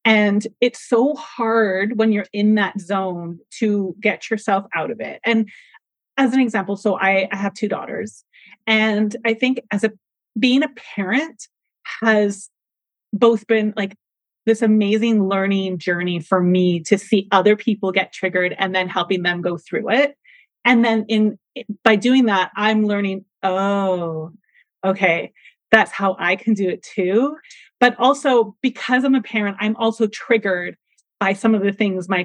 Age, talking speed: 30-49, 165 wpm